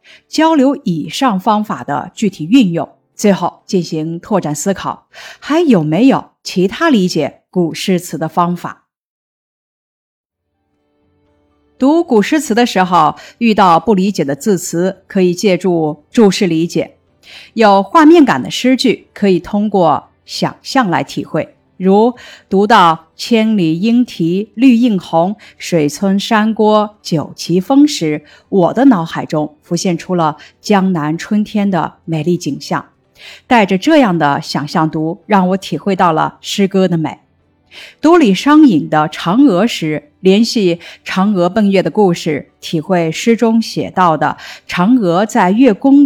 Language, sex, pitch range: Chinese, female, 165-225 Hz